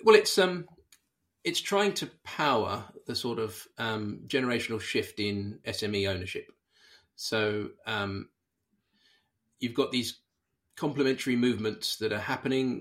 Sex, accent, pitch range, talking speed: male, British, 100-120 Hz, 120 wpm